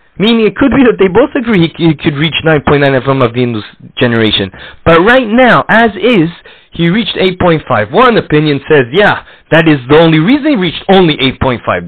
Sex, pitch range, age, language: male, 125-170 Hz, 30-49, English